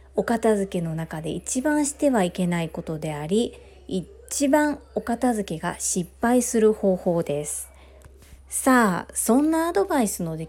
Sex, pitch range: female, 170-250 Hz